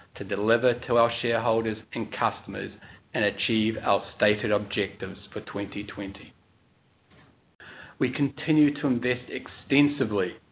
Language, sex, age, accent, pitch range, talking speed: English, male, 40-59, Australian, 100-125 Hz, 110 wpm